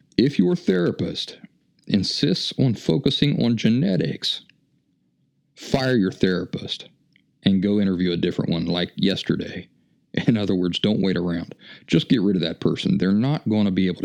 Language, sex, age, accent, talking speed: English, male, 40-59, American, 160 wpm